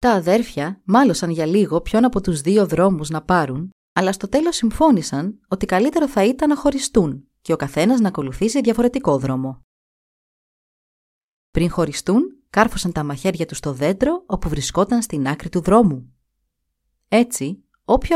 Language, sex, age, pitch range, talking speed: Greek, female, 20-39, 155-225 Hz, 150 wpm